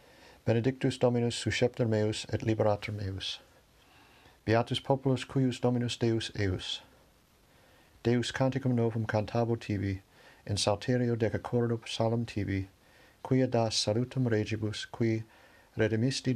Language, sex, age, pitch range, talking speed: English, male, 60-79, 105-120 Hz, 105 wpm